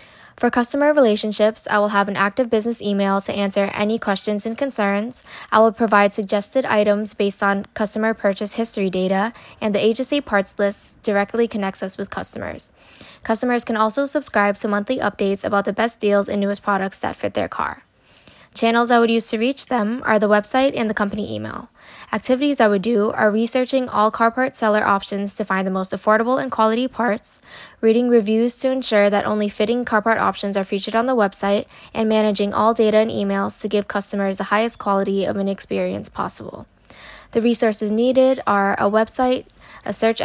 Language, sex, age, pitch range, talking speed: English, female, 10-29, 200-230 Hz, 190 wpm